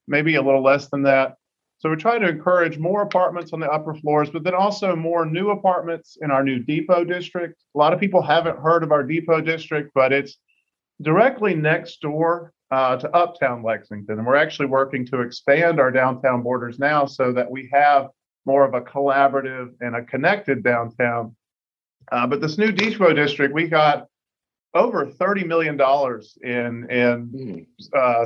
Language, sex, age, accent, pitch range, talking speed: English, male, 40-59, American, 130-160 Hz, 175 wpm